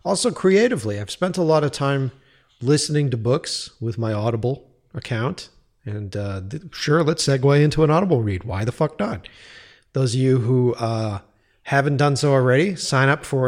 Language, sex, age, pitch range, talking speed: English, male, 40-59, 115-150 Hz, 185 wpm